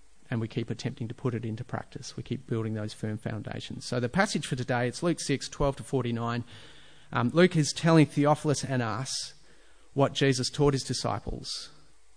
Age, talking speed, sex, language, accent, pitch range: 40-59, 185 wpm, male, English, Australian, 115-135 Hz